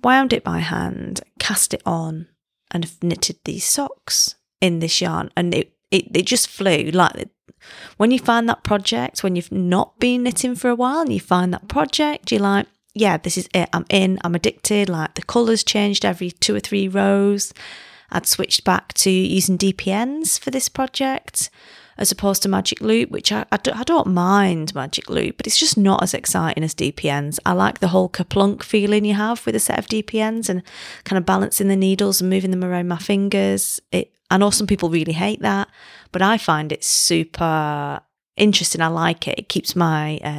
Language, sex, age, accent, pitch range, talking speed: English, female, 30-49, British, 165-210 Hz, 200 wpm